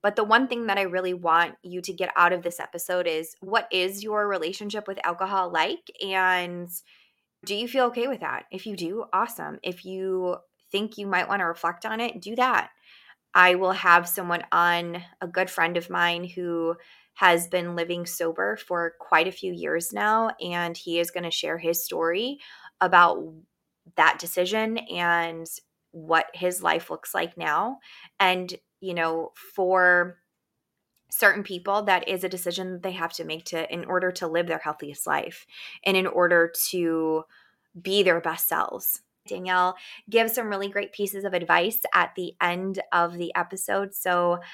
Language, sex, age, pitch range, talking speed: English, female, 20-39, 170-200 Hz, 175 wpm